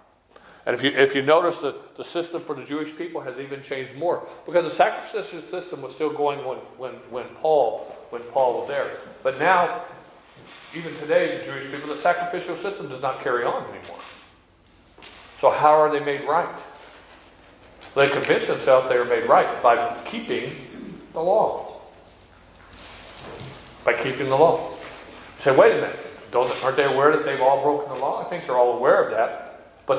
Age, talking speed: 40-59, 170 wpm